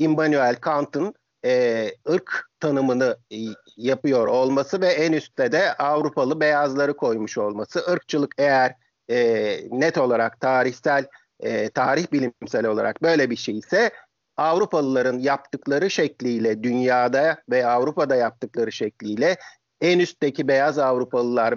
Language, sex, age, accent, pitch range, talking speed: Turkish, male, 50-69, native, 125-170 Hz, 115 wpm